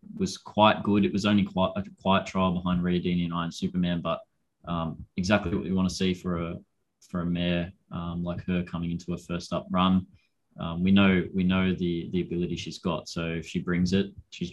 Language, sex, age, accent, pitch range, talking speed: English, male, 20-39, Australian, 90-100 Hz, 220 wpm